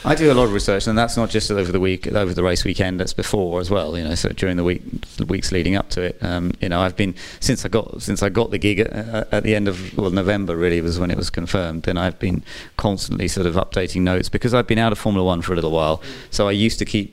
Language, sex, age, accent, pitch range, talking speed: English, male, 30-49, British, 85-100 Hz, 285 wpm